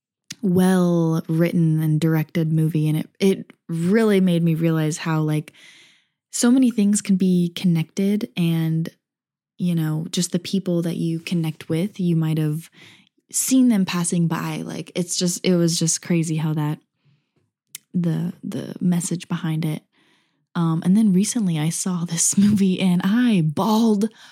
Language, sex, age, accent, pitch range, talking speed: English, female, 20-39, American, 165-200 Hz, 155 wpm